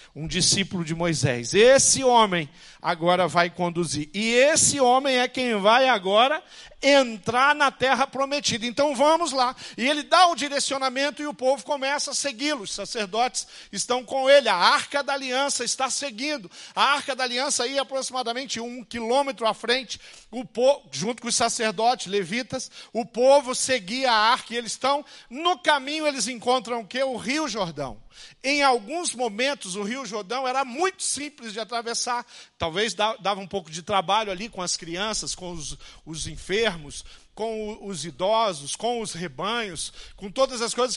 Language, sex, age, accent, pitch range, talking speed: Portuguese, male, 50-69, Brazilian, 195-265 Hz, 165 wpm